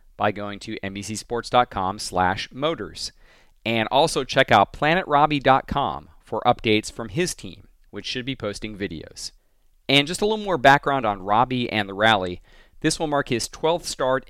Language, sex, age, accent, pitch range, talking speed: English, male, 40-59, American, 105-140 Hz, 160 wpm